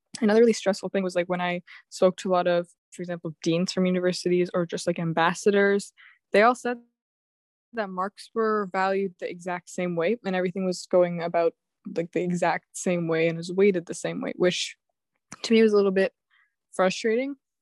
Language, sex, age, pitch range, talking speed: English, female, 20-39, 175-195 Hz, 195 wpm